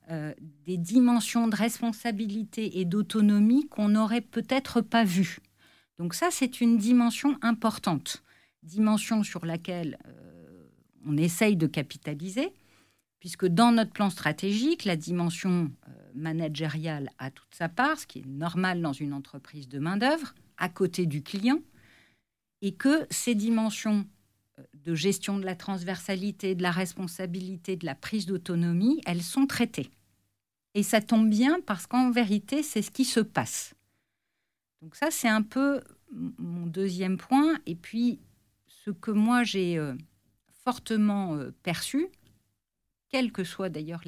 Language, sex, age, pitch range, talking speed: French, female, 50-69, 165-225 Hz, 145 wpm